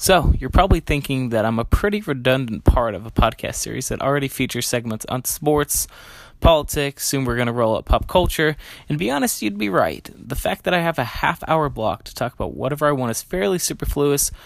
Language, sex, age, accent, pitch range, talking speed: English, male, 20-39, American, 120-145 Hz, 225 wpm